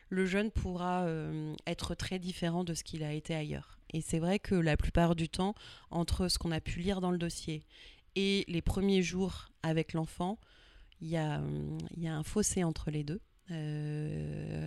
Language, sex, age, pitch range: French, female, 30-49, 150-175 Hz